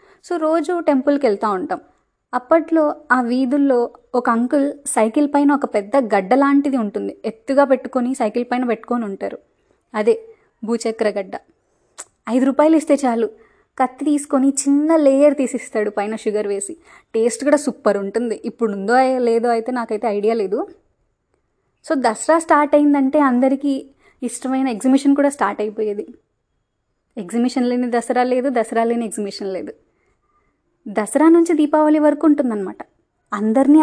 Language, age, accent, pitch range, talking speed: Telugu, 20-39, native, 230-295 Hz, 130 wpm